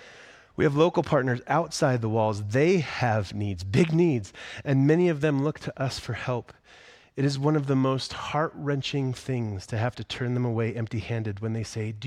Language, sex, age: English, male, 30-49